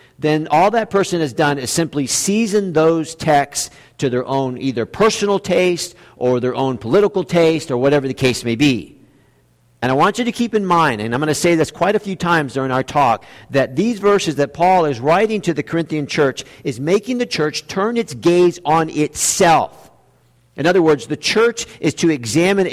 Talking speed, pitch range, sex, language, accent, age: 205 wpm, 135-190 Hz, male, English, American, 50-69